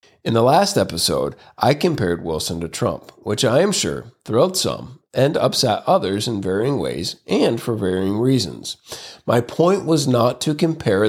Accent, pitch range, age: American, 95-145 Hz, 40-59